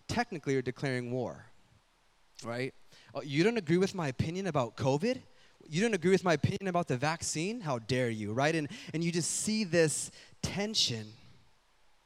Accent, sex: American, male